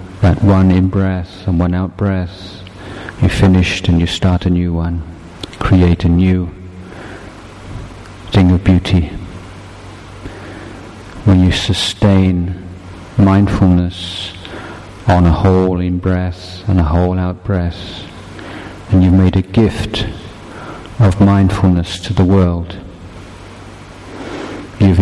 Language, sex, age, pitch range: Thai, male, 50-69, 90-100 Hz